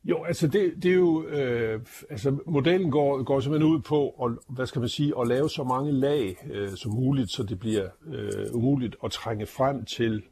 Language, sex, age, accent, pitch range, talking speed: Danish, male, 60-79, native, 110-140 Hz, 210 wpm